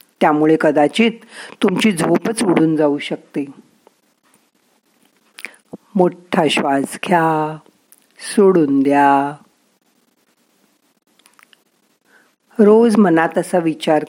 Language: Marathi